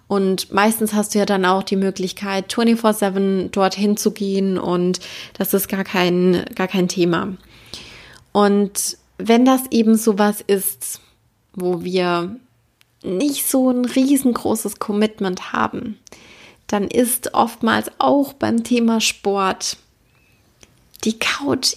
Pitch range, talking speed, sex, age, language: 185-235 Hz, 120 wpm, female, 20-39, German